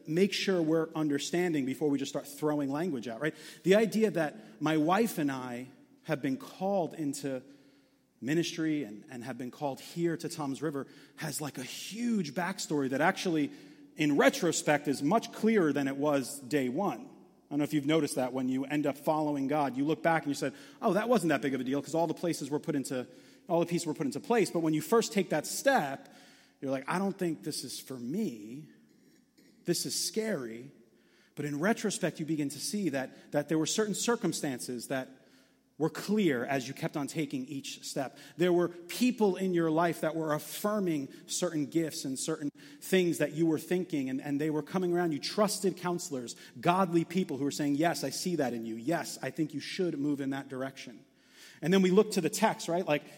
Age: 30-49